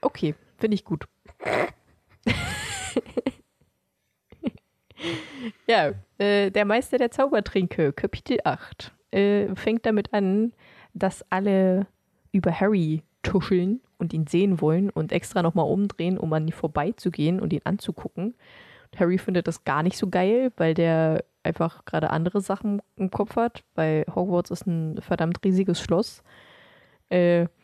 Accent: German